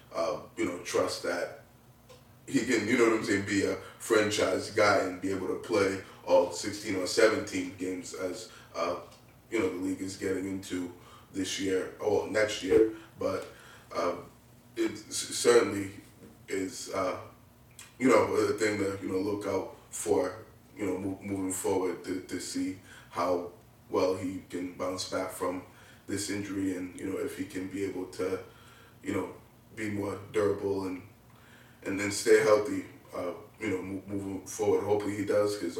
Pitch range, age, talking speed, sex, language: 90-120 Hz, 20-39, 170 wpm, male, English